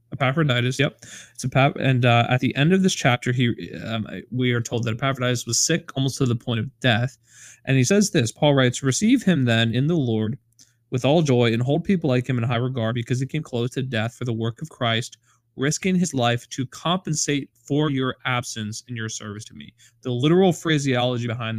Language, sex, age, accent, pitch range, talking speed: English, male, 20-39, American, 115-140 Hz, 220 wpm